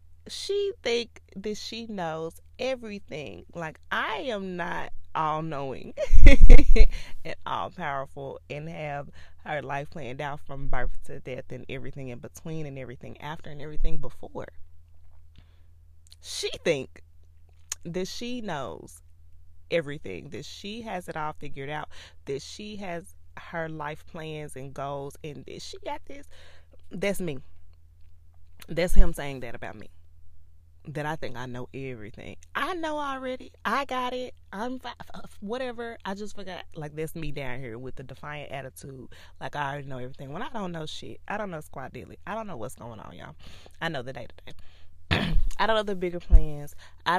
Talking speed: 160 wpm